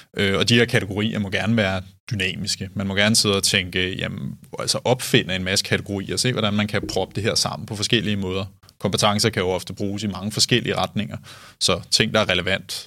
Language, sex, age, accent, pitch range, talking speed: Danish, male, 20-39, native, 95-115 Hz, 210 wpm